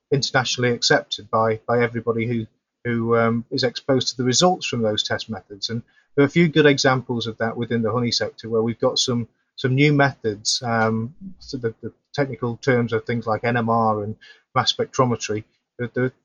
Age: 30-49